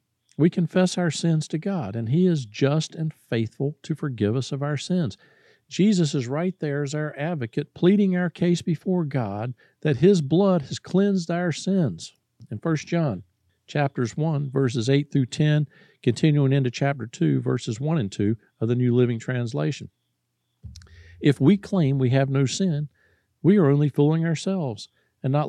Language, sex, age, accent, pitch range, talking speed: English, male, 50-69, American, 125-170 Hz, 170 wpm